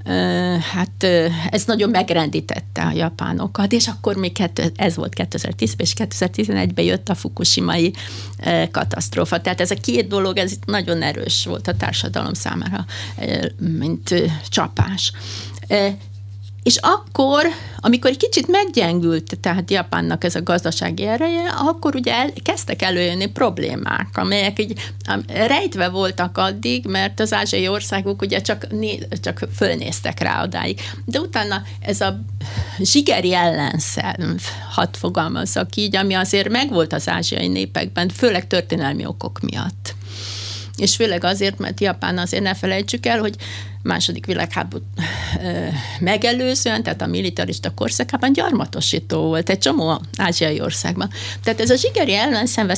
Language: Hungarian